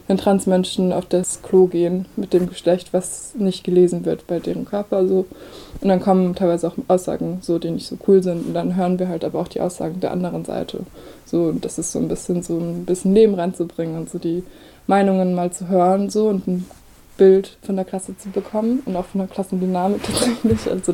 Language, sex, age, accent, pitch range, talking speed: German, female, 20-39, German, 180-195 Hz, 220 wpm